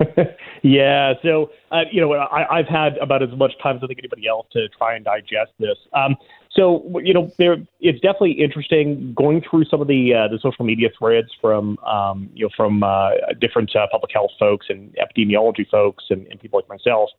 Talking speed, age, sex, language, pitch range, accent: 210 wpm, 30-49, male, English, 115-160 Hz, American